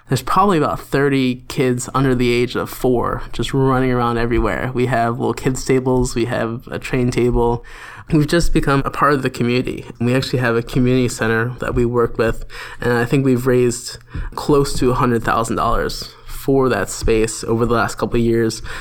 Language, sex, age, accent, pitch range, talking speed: English, male, 20-39, American, 115-130 Hz, 190 wpm